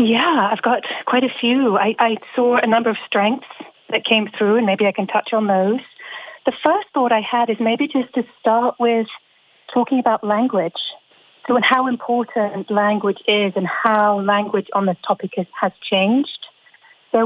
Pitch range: 195-235 Hz